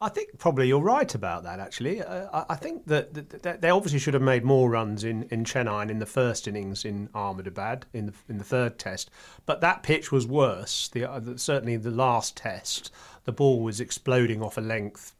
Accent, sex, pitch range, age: British, male, 110-130 Hz, 30-49